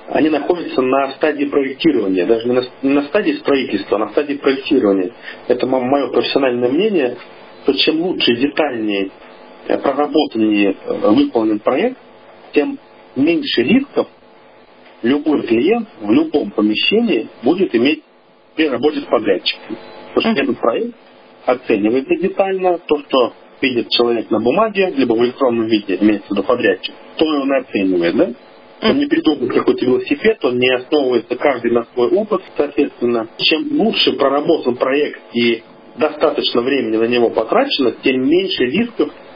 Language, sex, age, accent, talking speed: Russian, male, 50-69, native, 135 wpm